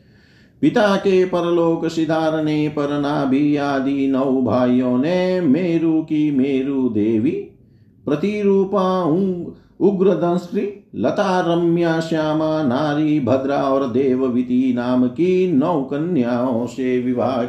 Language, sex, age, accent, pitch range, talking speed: Hindi, male, 50-69, native, 125-155 Hz, 60 wpm